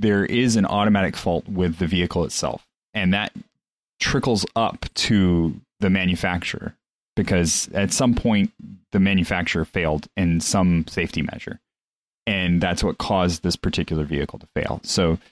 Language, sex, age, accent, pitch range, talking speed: English, male, 30-49, American, 80-100 Hz, 145 wpm